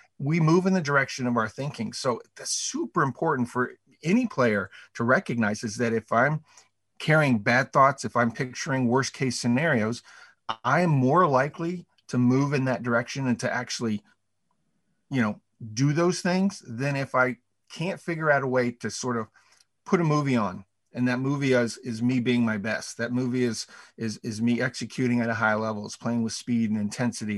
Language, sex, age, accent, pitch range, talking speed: English, male, 50-69, American, 115-140 Hz, 195 wpm